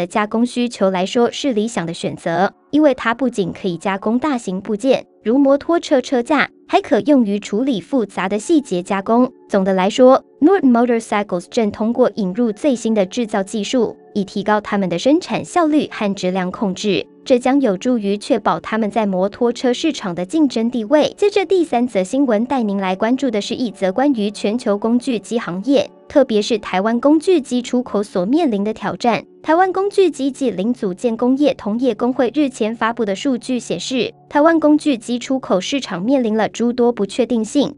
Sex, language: male, Chinese